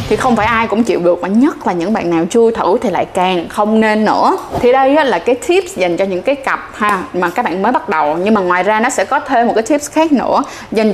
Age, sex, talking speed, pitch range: 20-39, female, 285 wpm, 185-250 Hz